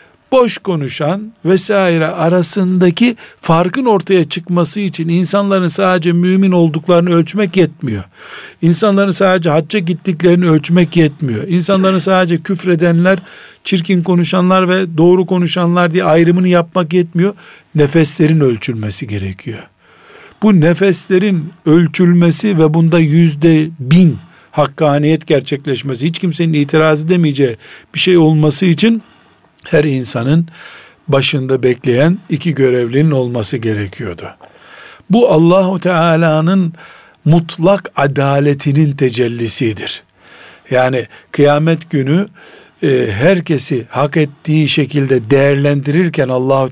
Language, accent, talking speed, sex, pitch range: Turkish, native, 95 wpm, male, 140-180 Hz